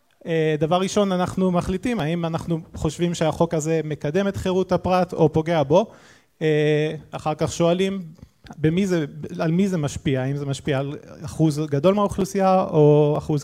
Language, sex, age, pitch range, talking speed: Hebrew, male, 20-39, 145-175 Hz, 145 wpm